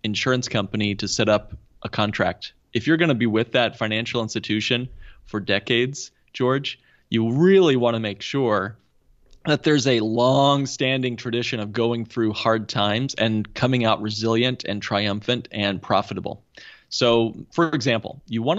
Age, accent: 30-49, American